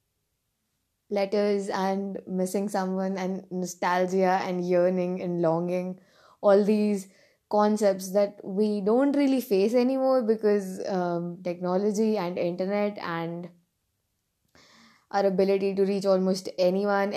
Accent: Indian